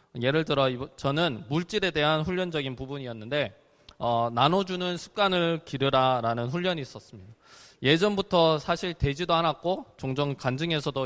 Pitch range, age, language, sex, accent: 130-185 Hz, 20-39, Korean, male, native